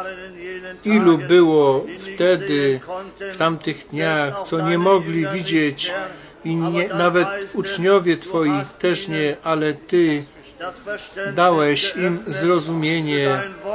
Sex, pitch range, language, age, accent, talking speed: male, 160-190 Hz, Polish, 40-59, native, 95 wpm